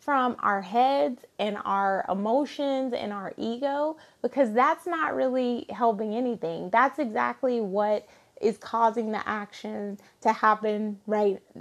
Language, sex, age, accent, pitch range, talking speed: English, female, 20-39, American, 210-255 Hz, 130 wpm